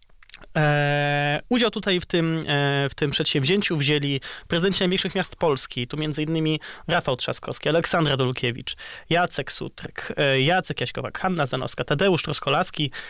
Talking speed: 135 wpm